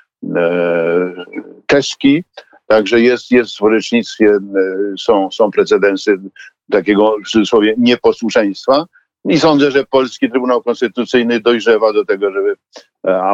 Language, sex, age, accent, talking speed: Polish, male, 50-69, native, 105 wpm